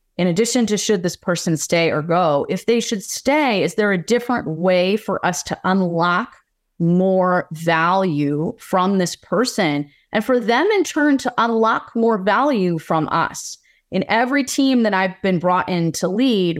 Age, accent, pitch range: 30-49, American, 165-220 Hz